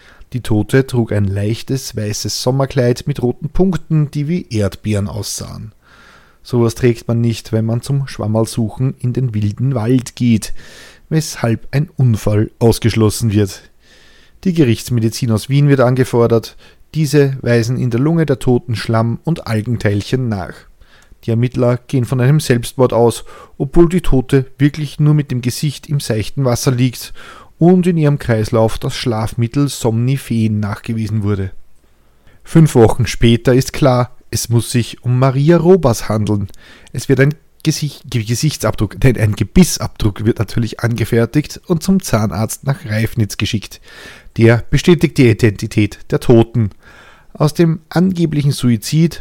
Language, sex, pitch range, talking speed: German, male, 110-140 Hz, 140 wpm